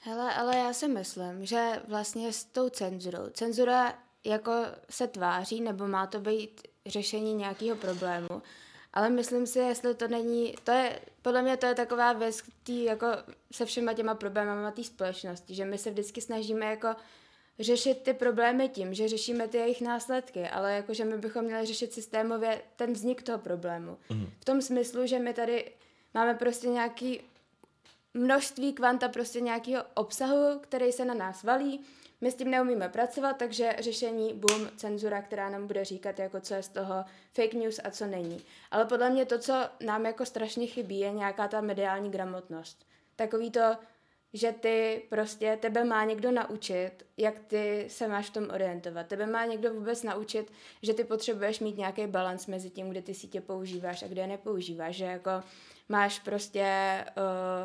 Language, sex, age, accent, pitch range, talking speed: Czech, female, 20-39, native, 200-240 Hz, 170 wpm